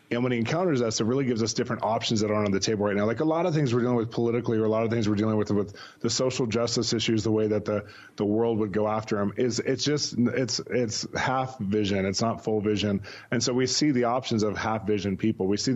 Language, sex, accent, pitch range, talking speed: English, male, American, 105-125 Hz, 280 wpm